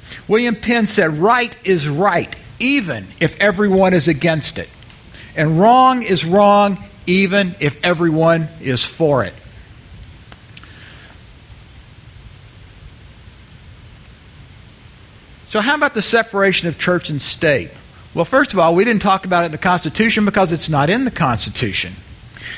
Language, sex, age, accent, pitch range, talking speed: English, male, 50-69, American, 130-200 Hz, 130 wpm